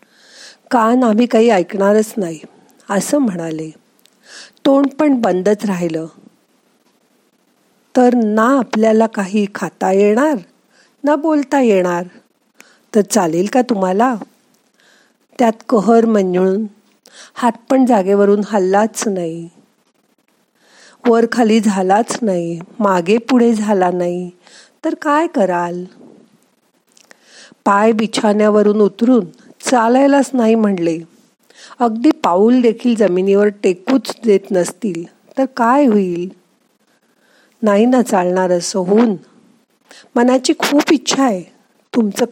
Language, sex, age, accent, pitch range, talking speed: Marathi, female, 50-69, native, 195-255 Hz, 90 wpm